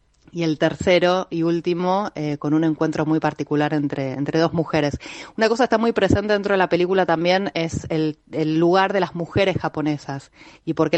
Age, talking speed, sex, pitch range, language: 30-49, 200 wpm, female, 155-190 Hz, Spanish